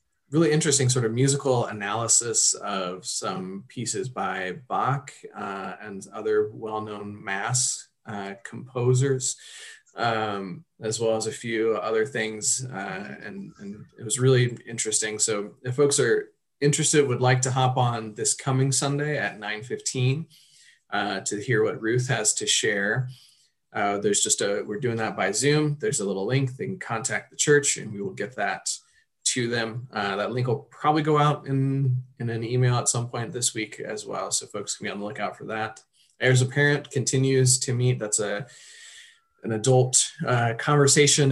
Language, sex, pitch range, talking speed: English, male, 110-145 Hz, 175 wpm